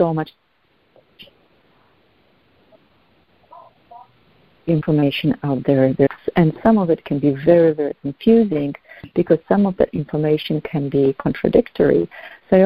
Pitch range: 150-180 Hz